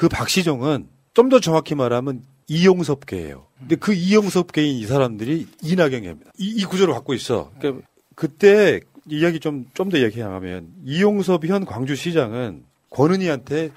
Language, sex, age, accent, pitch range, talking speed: English, male, 40-59, Korean, 125-175 Hz, 110 wpm